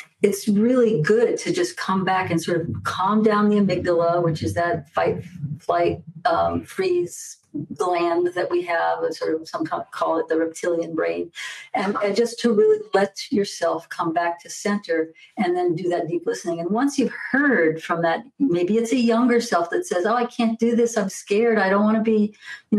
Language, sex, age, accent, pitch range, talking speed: English, female, 50-69, American, 170-235 Hz, 210 wpm